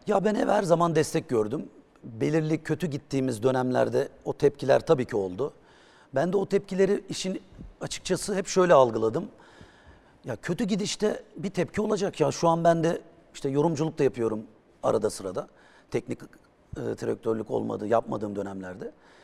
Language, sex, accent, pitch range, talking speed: Turkish, male, native, 130-175 Hz, 150 wpm